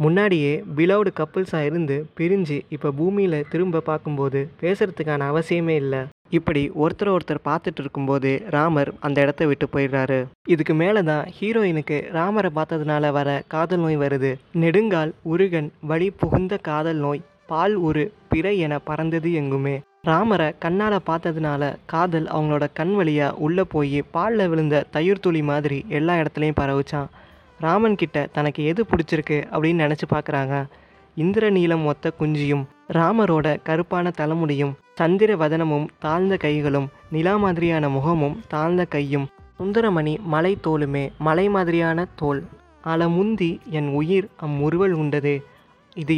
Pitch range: 145-175 Hz